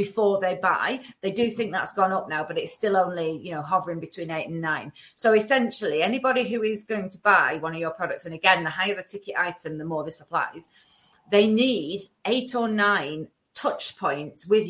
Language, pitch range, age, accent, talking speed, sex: English, 175-230 Hz, 30-49, British, 210 wpm, female